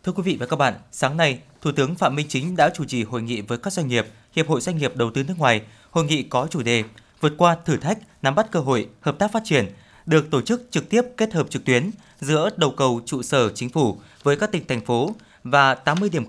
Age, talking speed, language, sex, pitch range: 20-39, 260 wpm, Vietnamese, male, 125-170 Hz